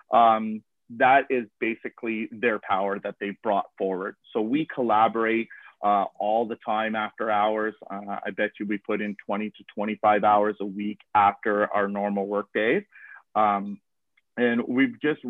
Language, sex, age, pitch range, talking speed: English, male, 30-49, 105-130 Hz, 160 wpm